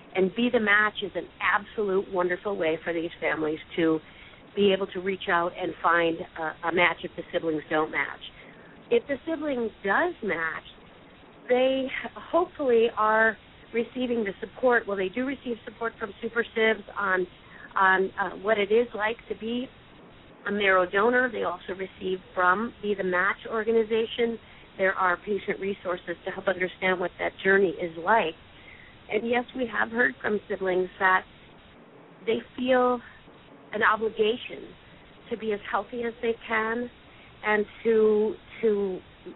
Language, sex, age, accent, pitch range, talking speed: English, female, 50-69, American, 185-225 Hz, 150 wpm